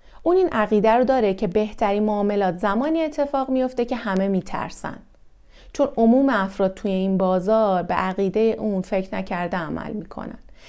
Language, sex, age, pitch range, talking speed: Persian, female, 30-49, 185-245 Hz, 150 wpm